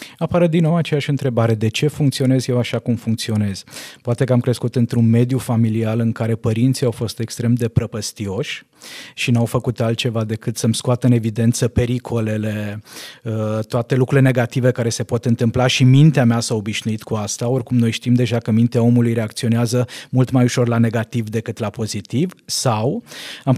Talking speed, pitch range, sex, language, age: 175 wpm, 115-150 Hz, male, Romanian, 20-39